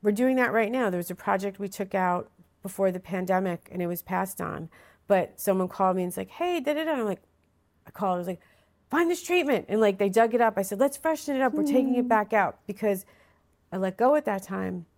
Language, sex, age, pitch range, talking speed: English, female, 40-59, 175-210 Hz, 255 wpm